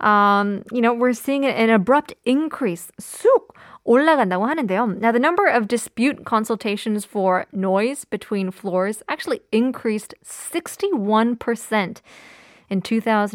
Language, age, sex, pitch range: Korean, 20-39, female, 200-265 Hz